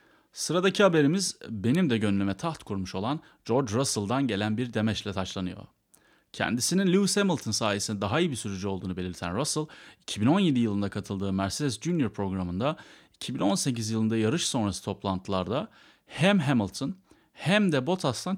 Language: Turkish